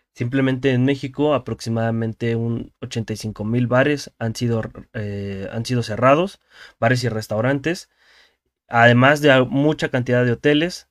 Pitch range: 115-135 Hz